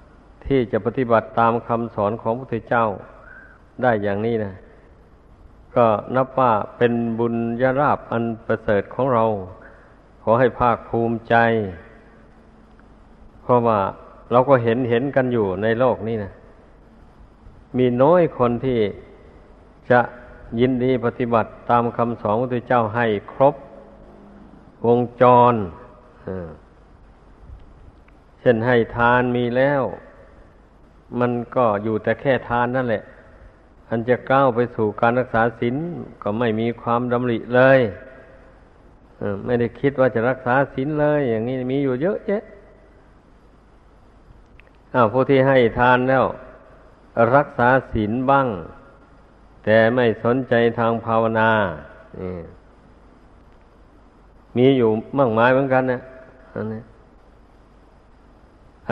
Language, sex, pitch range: Thai, male, 110-130 Hz